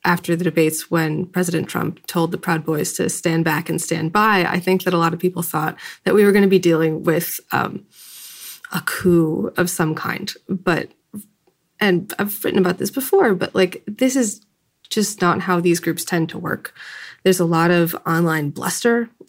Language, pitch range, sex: English, 170-195 Hz, female